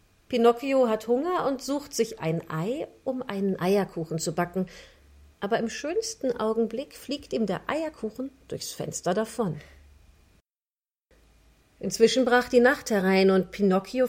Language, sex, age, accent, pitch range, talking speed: German, female, 40-59, German, 170-245 Hz, 130 wpm